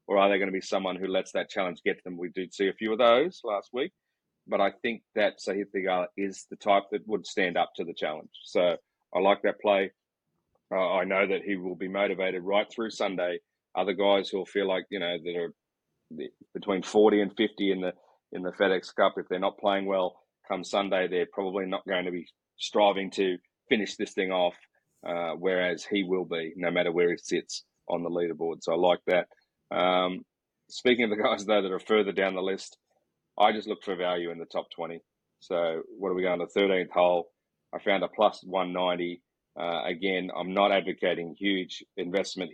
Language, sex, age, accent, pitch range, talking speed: English, male, 30-49, Australian, 90-100 Hz, 210 wpm